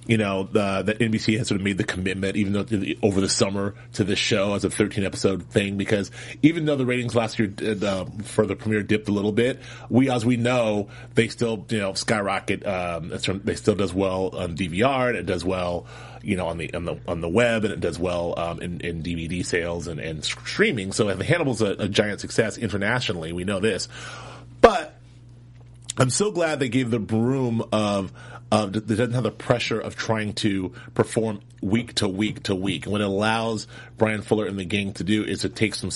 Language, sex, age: English, male, 30-49